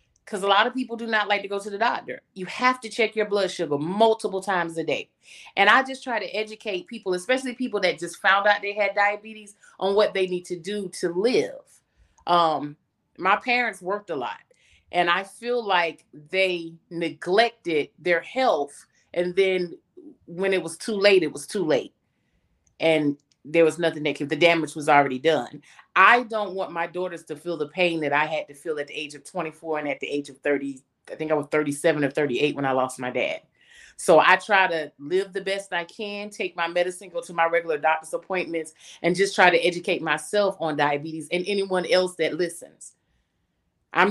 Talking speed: 205 wpm